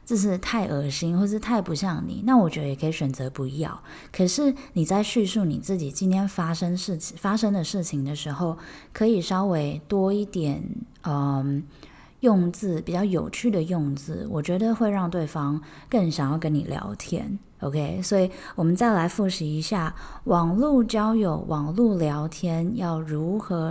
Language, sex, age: Chinese, female, 20-39